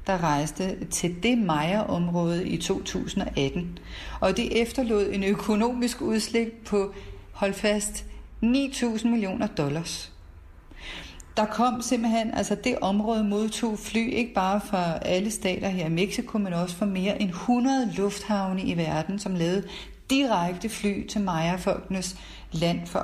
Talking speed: 135 wpm